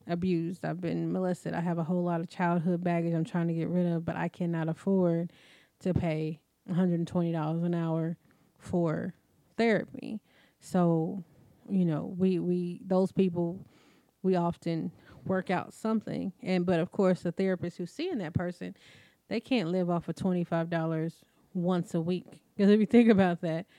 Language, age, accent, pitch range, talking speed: English, 20-39, American, 170-195 Hz, 170 wpm